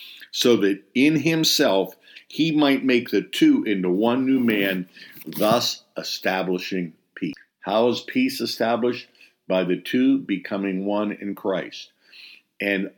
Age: 50-69